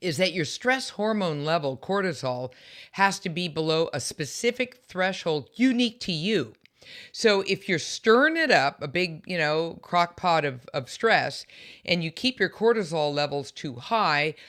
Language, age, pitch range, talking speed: English, 50-69, 140-190 Hz, 165 wpm